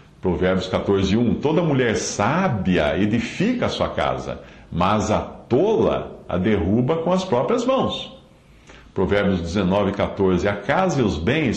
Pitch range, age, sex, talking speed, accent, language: 90-120 Hz, 60-79, male, 140 wpm, Brazilian, English